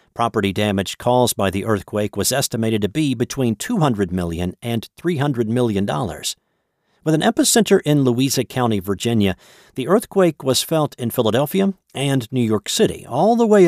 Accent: American